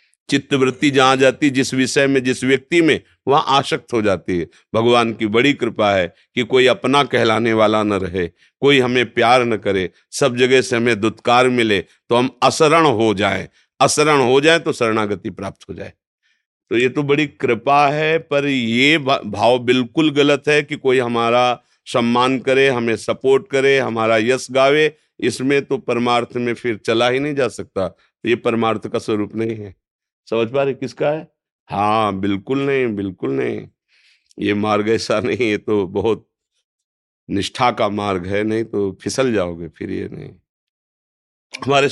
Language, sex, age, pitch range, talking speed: Hindi, male, 50-69, 105-135 Hz, 170 wpm